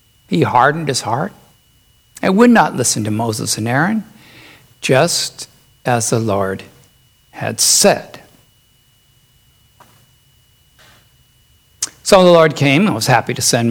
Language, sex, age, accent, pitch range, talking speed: English, male, 60-79, American, 120-175 Hz, 120 wpm